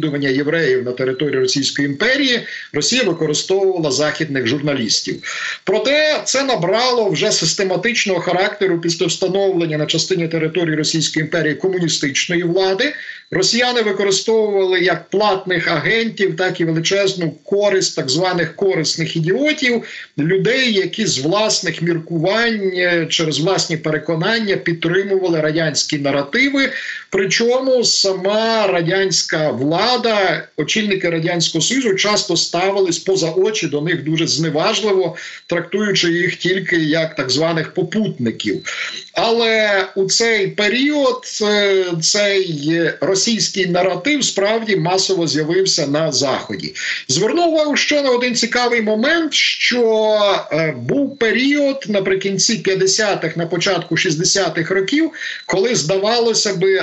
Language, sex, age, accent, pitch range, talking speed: Ukrainian, male, 50-69, native, 165-215 Hz, 105 wpm